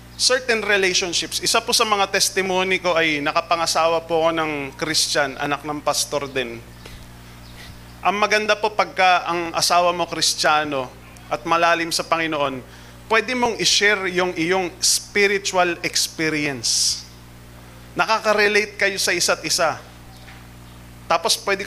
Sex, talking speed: male, 120 wpm